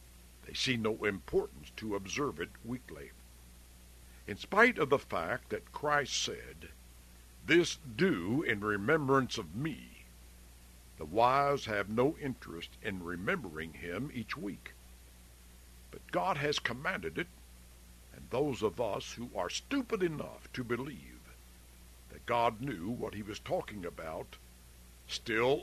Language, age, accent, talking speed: English, 60-79, American, 130 wpm